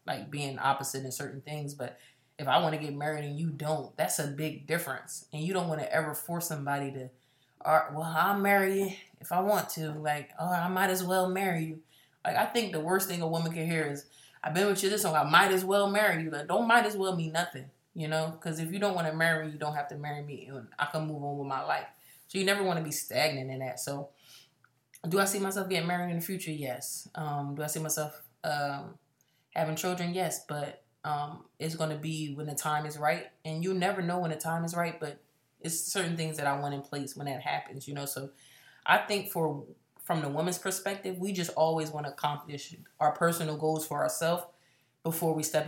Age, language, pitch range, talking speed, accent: 20-39, English, 145-175 Hz, 240 wpm, American